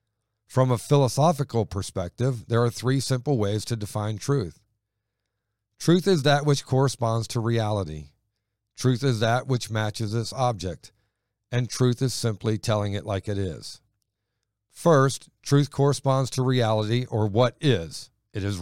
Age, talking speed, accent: 50-69, 145 wpm, American